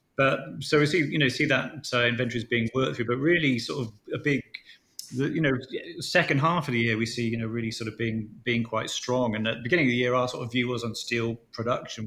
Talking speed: 260 wpm